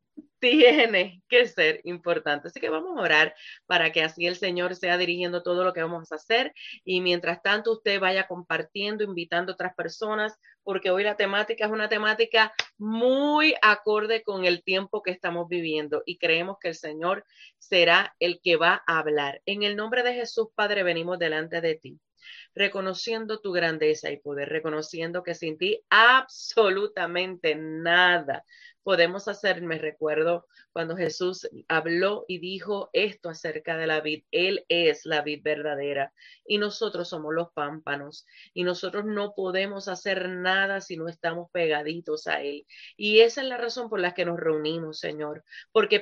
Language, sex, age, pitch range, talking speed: English, female, 30-49, 165-210 Hz, 165 wpm